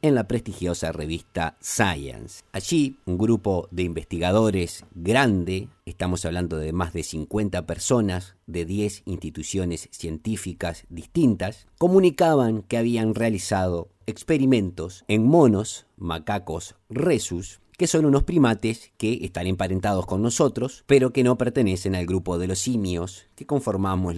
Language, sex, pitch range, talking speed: Spanish, male, 90-125 Hz, 130 wpm